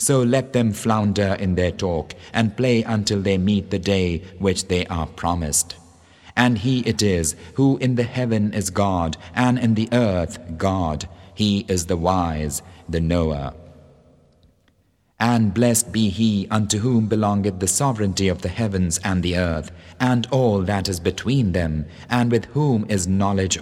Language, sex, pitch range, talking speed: English, male, 90-115 Hz, 165 wpm